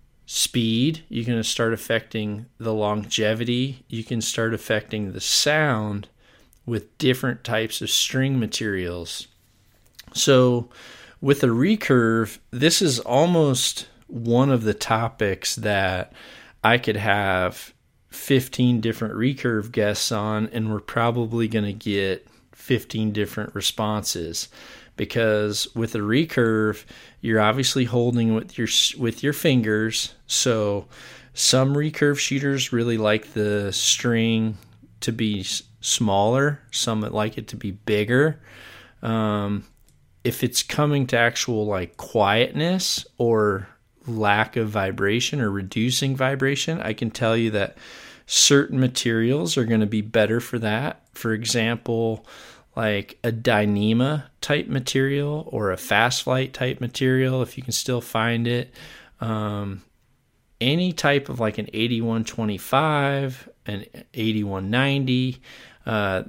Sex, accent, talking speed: male, American, 120 wpm